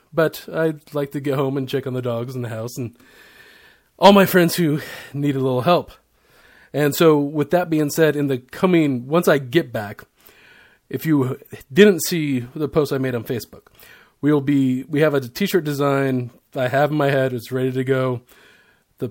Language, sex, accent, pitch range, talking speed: English, male, American, 125-145 Hz, 200 wpm